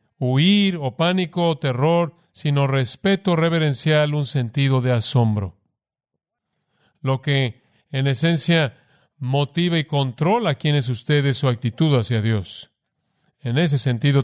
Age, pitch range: 50-69, 130-155 Hz